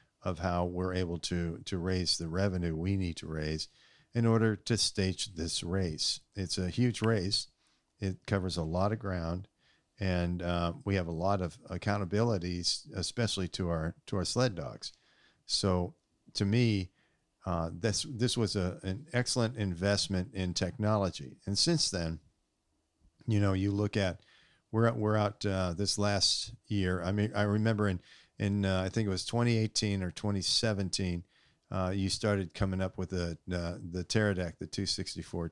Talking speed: 165 wpm